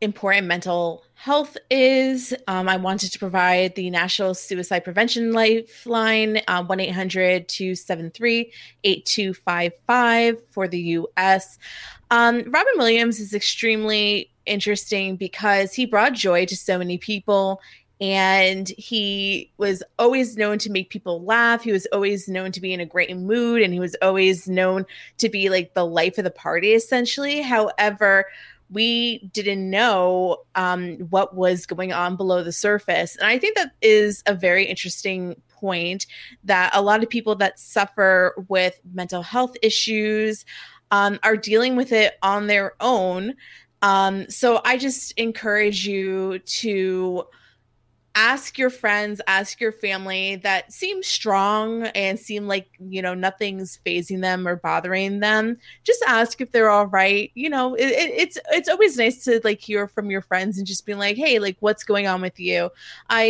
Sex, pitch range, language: female, 185-225 Hz, English